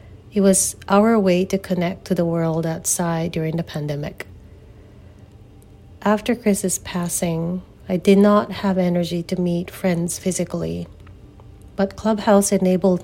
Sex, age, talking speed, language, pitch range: female, 40-59, 130 wpm, English, 115-185 Hz